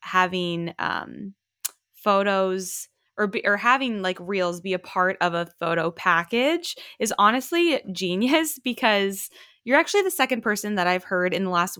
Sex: female